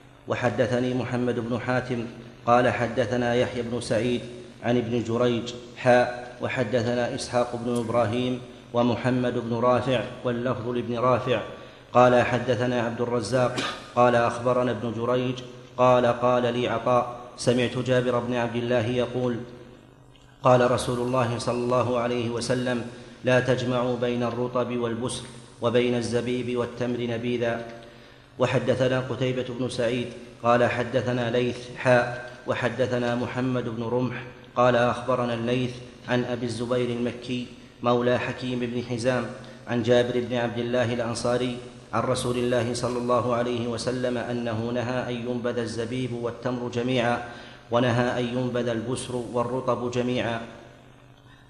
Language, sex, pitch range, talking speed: Arabic, male, 120-125 Hz, 125 wpm